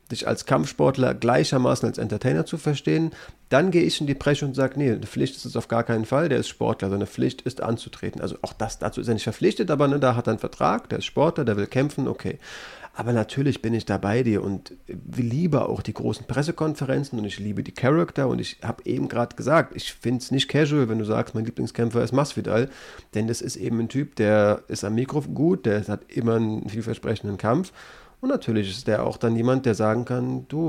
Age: 30-49